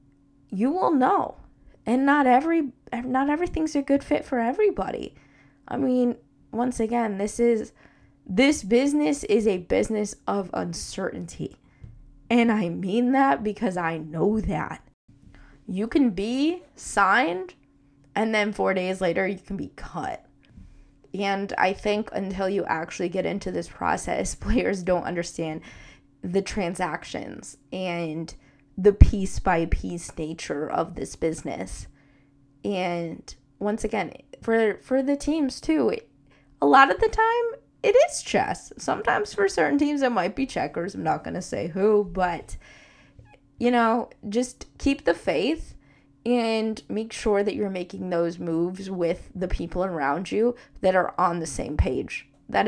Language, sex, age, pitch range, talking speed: English, female, 20-39, 170-240 Hz, 140 wpm